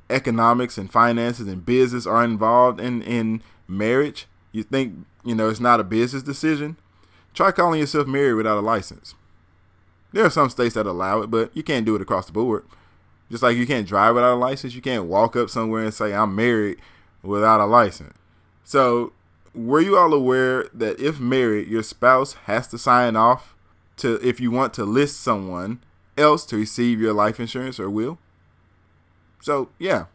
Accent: American